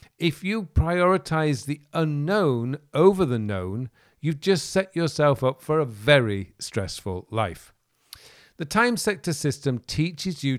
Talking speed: 135 wpm